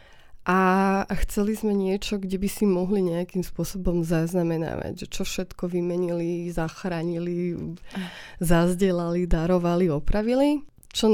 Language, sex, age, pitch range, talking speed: Slovak, female, 20-39, 180-200 Hz, 110 wpm